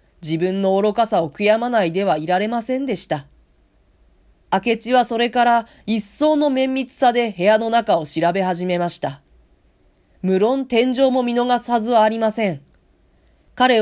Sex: female